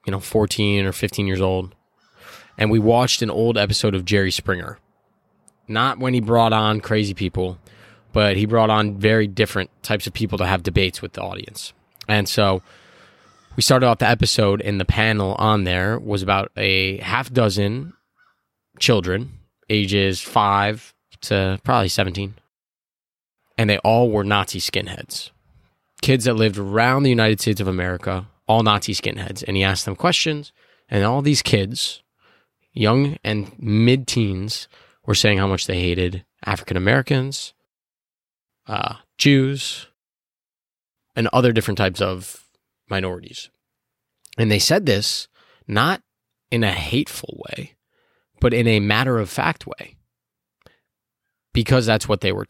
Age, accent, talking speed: 20-39, American, 140 wpm